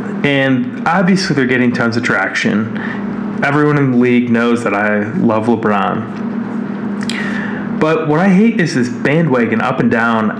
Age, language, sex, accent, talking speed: 30-49, English, male, American, 150 wpm